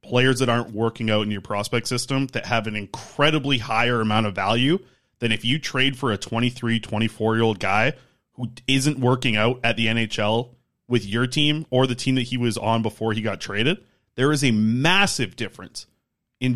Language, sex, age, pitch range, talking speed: English, male, 30-49, 115-150 Hz, 200 wpm